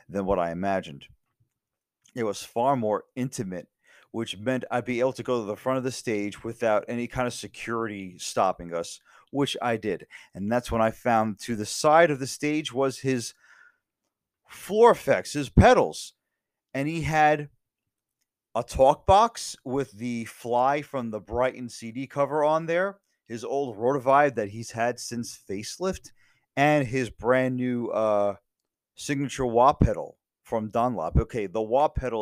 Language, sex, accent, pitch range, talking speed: English, male, American, 110-135 Hz, 160 wpm